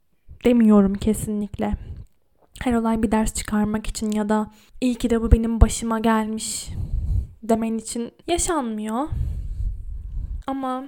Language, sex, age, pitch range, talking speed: Turkish, female, 10-29, 215-250 Hz, 115 wpm